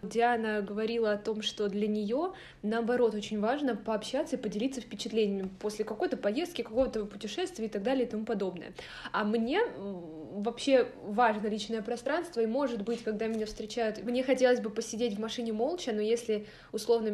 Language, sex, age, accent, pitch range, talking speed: Russian, female, 20-39, native, 210-240 Hz, 165 wpm